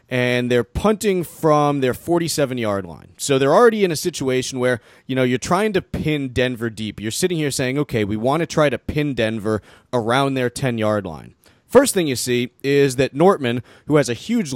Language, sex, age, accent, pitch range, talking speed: English, male, 30-49, American, 120-160 Hz, 200 wpm